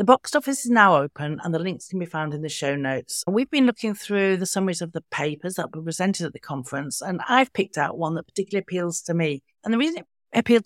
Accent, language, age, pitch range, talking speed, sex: British, English, 60-79, 155-200 Hz, 260 wpm, female